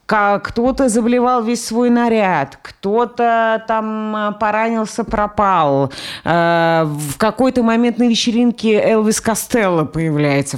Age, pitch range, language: 30-49, 175-260 Hz, Russian